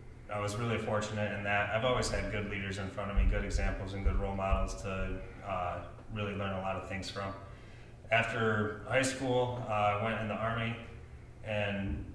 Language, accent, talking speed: English, American, 200 wpm